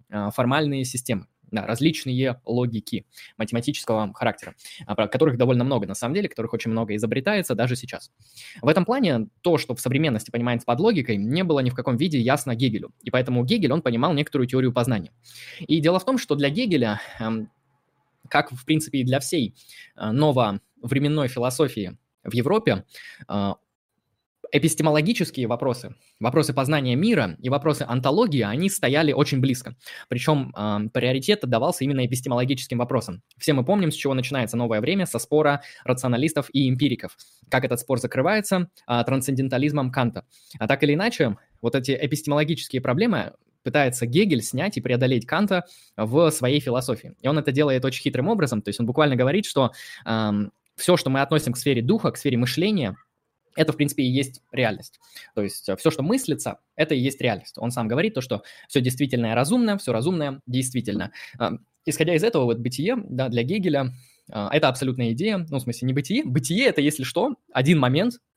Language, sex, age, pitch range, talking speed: Russian, male, 20-39, 120-150 Hz, 165 wpm